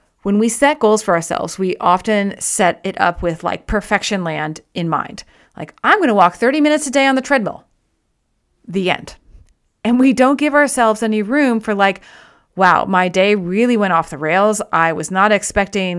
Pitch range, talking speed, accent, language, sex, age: 180-235 Hz, 190 wpm, American, English, female, 30-49